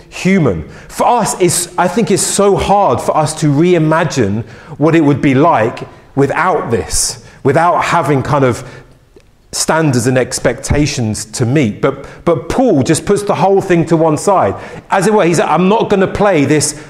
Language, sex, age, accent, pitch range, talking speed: English, male, 40-59, British, 135-180 Hz, 180 wpm